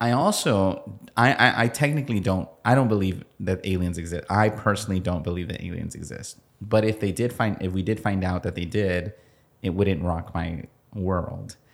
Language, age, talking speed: English, 30-49, 195 wpm